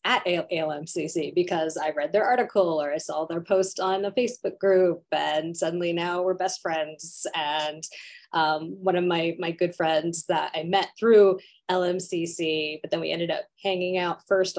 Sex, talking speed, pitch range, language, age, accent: female, 175 wpm, 165-205 Hz, English, 20-39, American